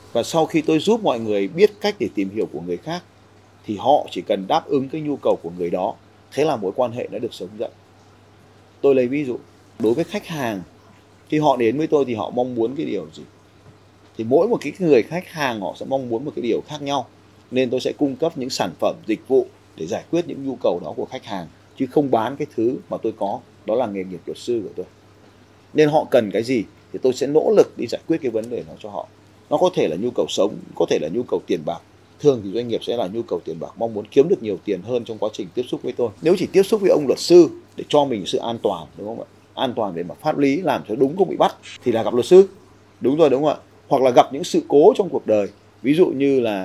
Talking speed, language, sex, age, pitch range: 280 wpm, Vietnamese, male, 30-49, 105-160 Hz